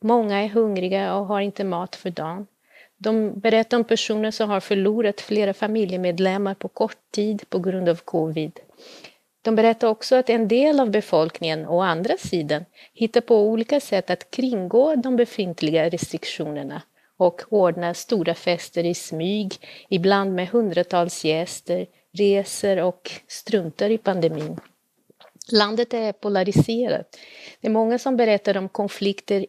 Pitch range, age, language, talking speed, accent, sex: 175-225 Hz, 30-49, Swedish, 140 wpm, native, female